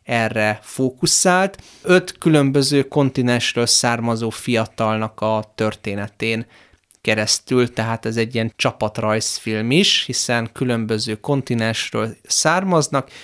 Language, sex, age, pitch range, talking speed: Hungarian, male, 30-49, 115-135 Hz, 90 wpm